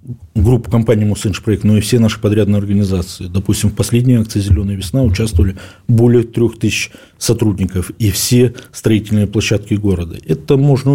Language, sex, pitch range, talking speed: Russian, male, 95-120 Hz, 155 wpm